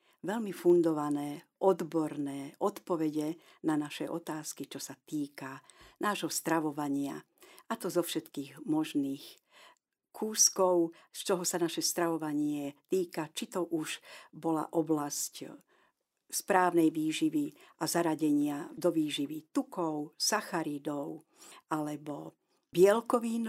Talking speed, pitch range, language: 100 wpm, 155-200 Hz, Slovak